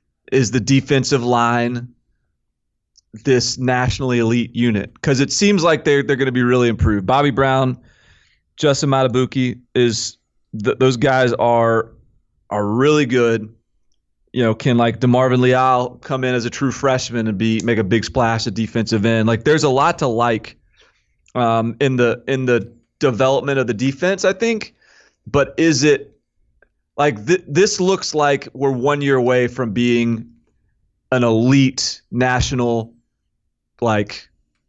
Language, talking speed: English, 150 wpm